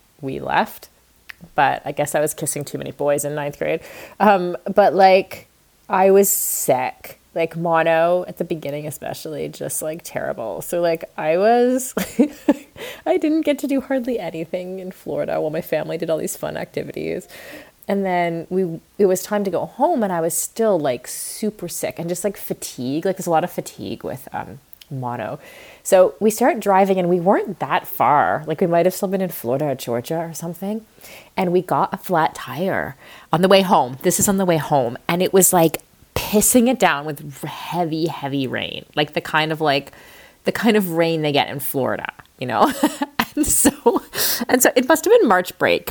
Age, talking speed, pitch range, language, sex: 30-49, 195 wpm, 160-205 Hz, English, female